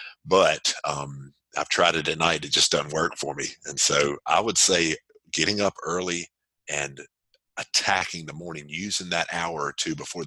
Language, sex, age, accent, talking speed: English, male, 50-69, American, 180 wpm